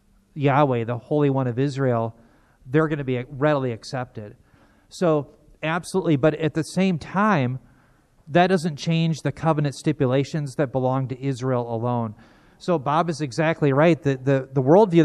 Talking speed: 155 wpm